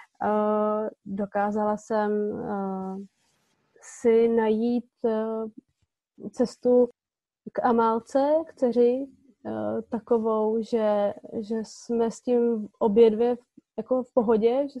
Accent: native